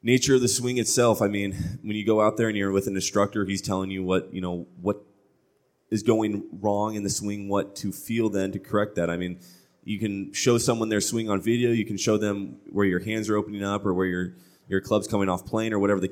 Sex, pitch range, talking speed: male, 90-105 Hz, 255 wpm